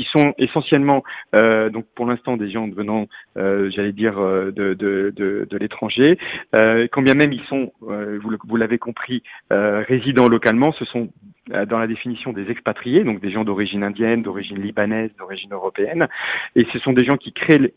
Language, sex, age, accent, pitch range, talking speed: French, male, 40-59, French, 110-130 Hz, 190 wpm